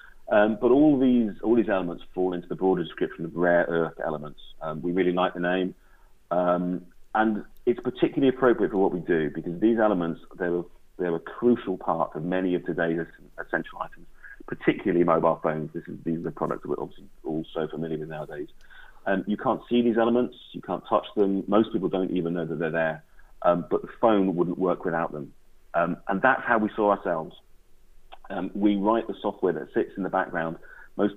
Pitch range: 85-105 Hz